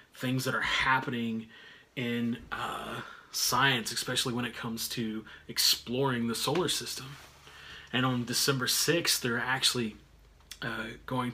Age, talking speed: 30-49, 125 wpm